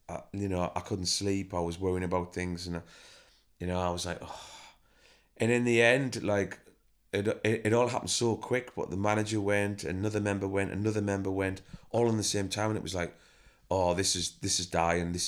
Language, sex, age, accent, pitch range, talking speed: English, male, 30-49, British, 90-110 Hz, 225 wpm